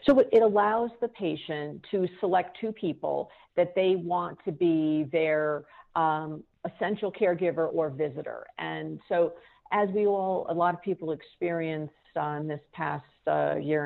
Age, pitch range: 50-69, 155-190 Hz